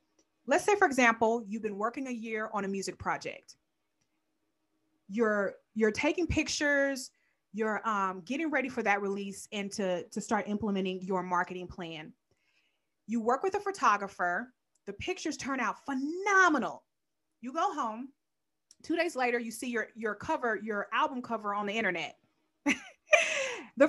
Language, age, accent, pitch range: English, 20-39, American, 205-295 Hz